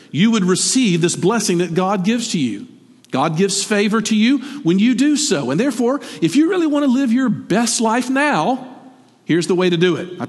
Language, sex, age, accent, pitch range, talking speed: English, male, 50-69, American, 180-255 Hz, 220 wpm